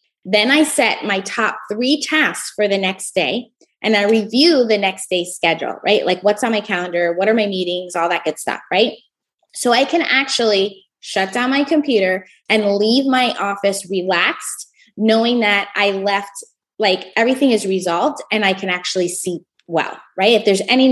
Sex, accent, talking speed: female, American, 185 wpm